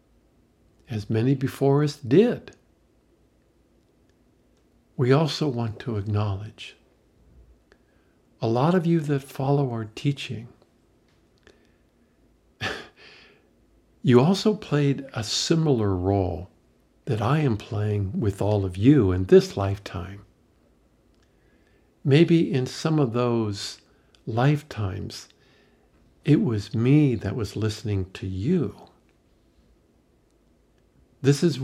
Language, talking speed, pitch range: English, 95 wpm, 105-140 Hz